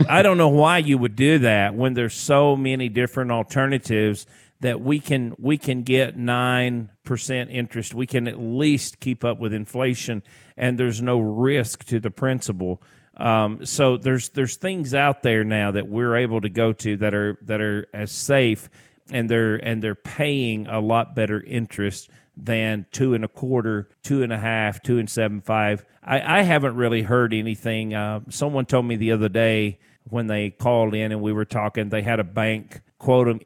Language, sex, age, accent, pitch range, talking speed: English, male, 40-59, American, 110-130 Hz, 190 wpm